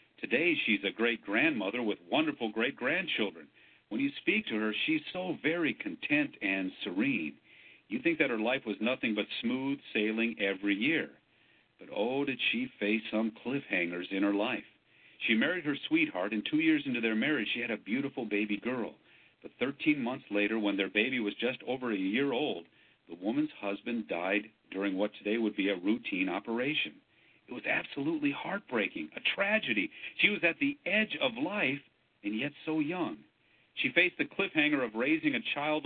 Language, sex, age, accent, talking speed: English, male, 50-69, American, 175 wpm